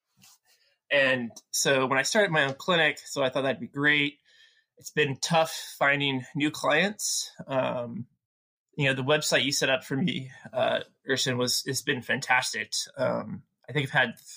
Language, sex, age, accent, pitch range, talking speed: English, male, 20-39, American, 130-150 Hz, 170 wpm